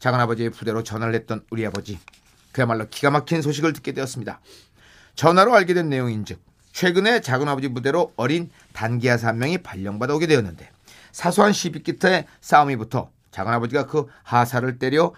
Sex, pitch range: male, 115-155 Hz